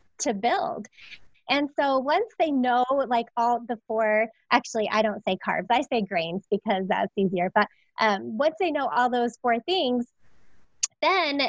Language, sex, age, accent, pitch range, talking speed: English, female, 20-39, American, 225-285 Hz, 165 wpm